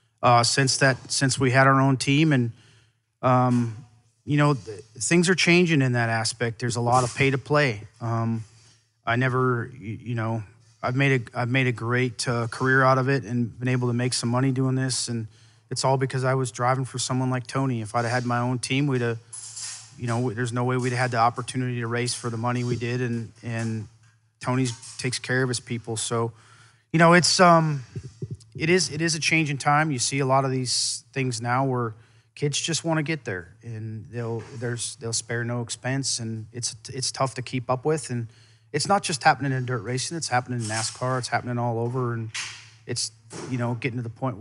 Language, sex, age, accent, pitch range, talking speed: English, male, 30-49, American, 115-130 Hz, 220 wpm